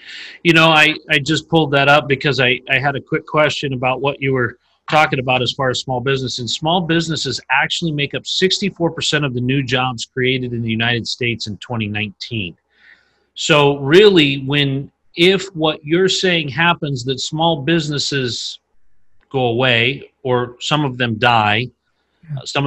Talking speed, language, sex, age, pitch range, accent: 165 wpm, English, male, 40-59, 125-150 Hz, American